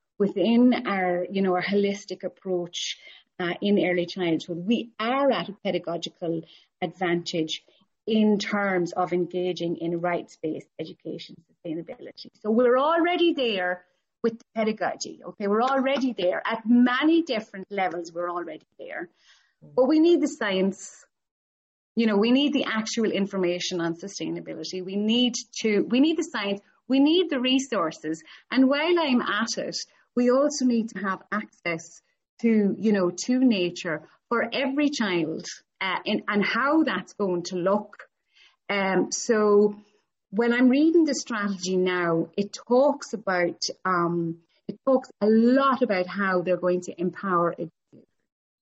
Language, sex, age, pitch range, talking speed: English, female, 30-49, 180-245 Hz, 145 wpm